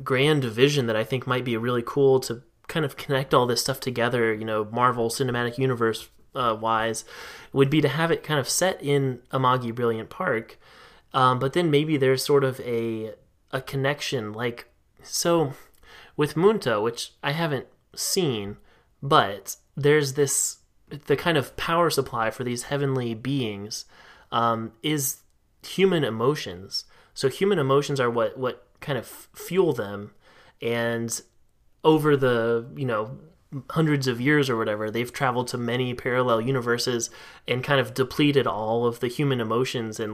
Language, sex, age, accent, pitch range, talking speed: English, male, 20-39, American, 115-140 Hz, 160 wpm